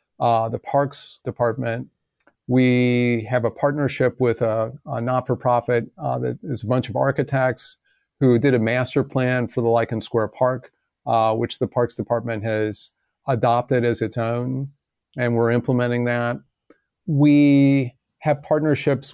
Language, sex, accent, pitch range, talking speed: English, male, American, 115-135 Hz, 145 wpm